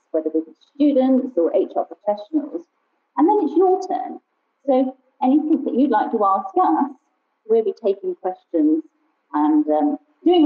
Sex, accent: female, British